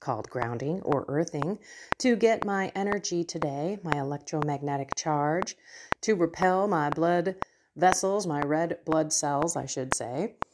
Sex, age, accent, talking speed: female, 40-59, American, 135 wpm